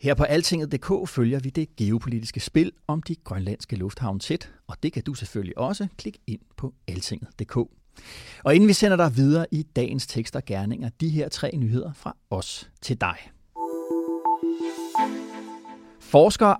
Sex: male